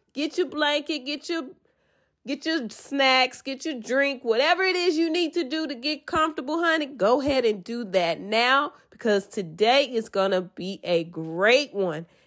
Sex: female